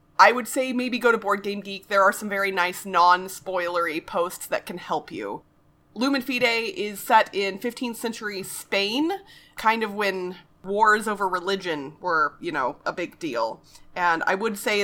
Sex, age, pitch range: female, 30-49, 175-230 Hz